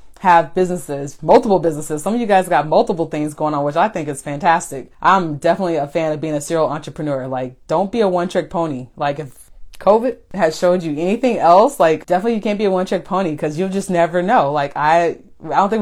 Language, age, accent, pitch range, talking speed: English, 20-39, American, 155-185 Hz, 230 wpm